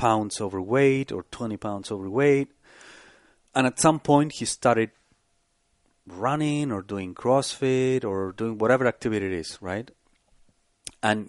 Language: English